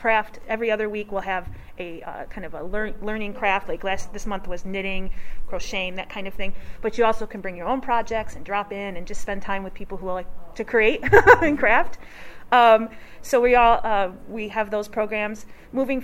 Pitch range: 190-225 Hz